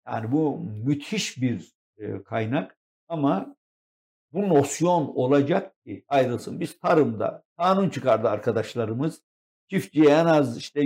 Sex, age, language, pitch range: male, 60-79, Turkish, 120-165 Hz